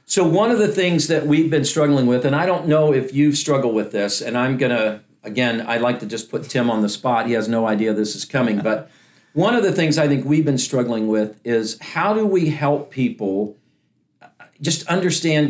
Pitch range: 120-160 Hz